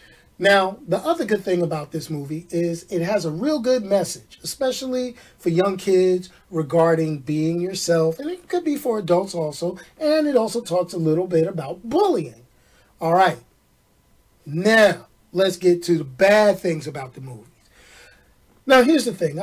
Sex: male